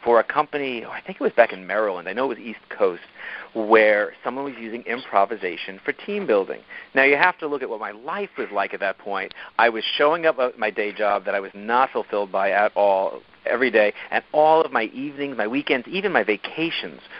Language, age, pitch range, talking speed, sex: English, 40-59, 105-155 Hz, 235 wpm, male